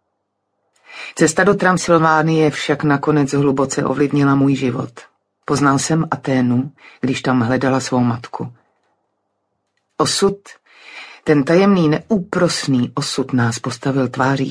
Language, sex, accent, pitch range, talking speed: Czech, female, native, 135-165 Hz, 105 wpm